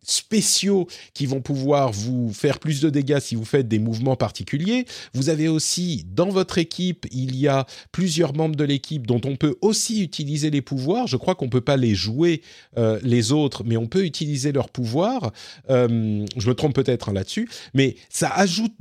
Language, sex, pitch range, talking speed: French, male, 110-155 Hz, 200 wpm